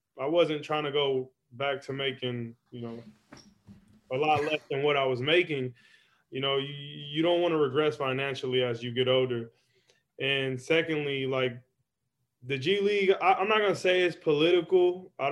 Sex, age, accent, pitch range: male, 20-39, American, 125-145 Hz